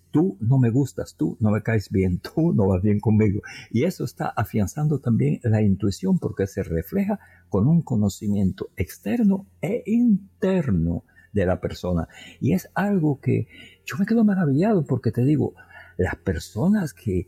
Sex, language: male, Spanish